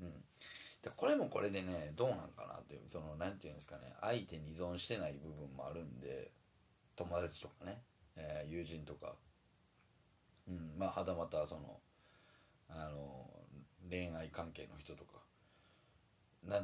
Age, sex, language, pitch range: 40-59, male, Japanese, 80-120 Hz